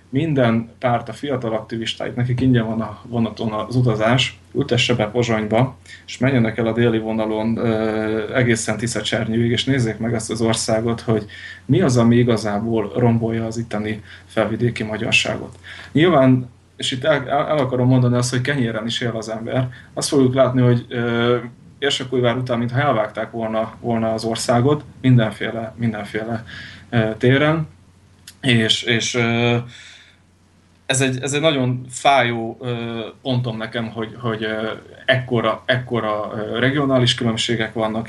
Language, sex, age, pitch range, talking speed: Slovak, male, 20-39, 110-125 Hz, 145 wpm